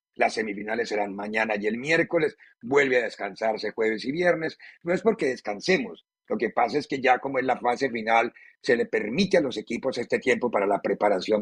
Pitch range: 115-175 Hz